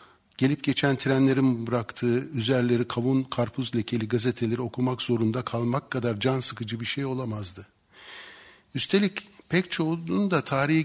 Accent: native